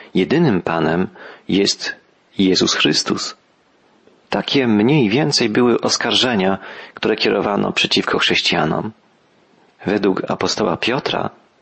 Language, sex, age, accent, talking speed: Polish, male, 40-59, native, 90 wpm